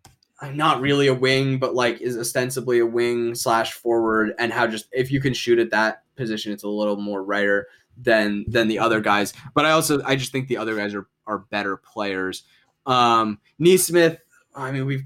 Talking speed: 205 wpm